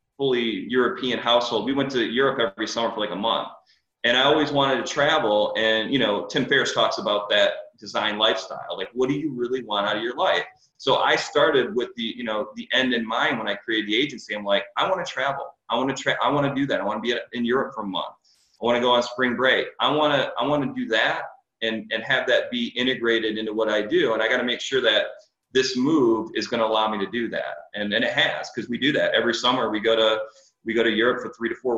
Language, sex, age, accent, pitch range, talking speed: English, male, 30-49, American, 105-125 Hz, 265 wpm